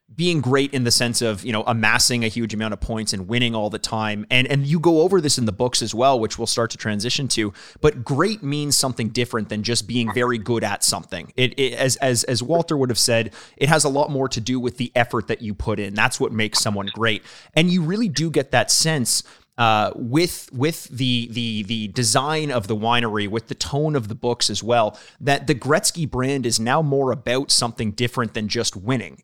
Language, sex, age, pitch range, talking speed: English, male, 30-49, 115-140 Hz, 235 wpm